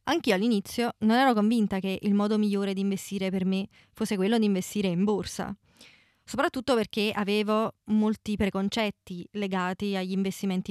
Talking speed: 150 wpm